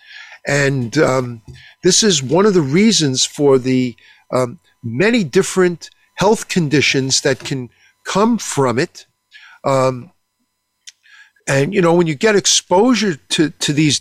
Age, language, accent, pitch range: 50-69, English, American, 130-185 Hz